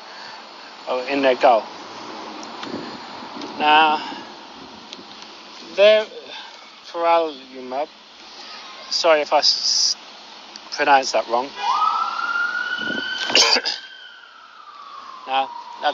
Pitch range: 140-200 Hz